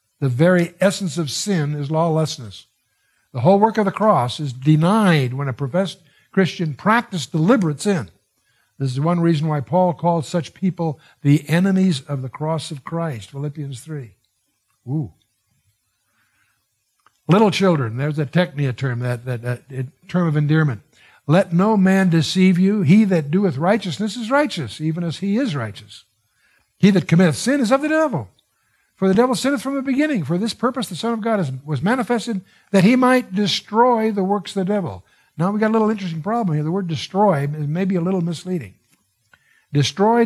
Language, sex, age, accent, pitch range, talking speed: English, male, 60-79, American, 140-205 Hz, 175 wpm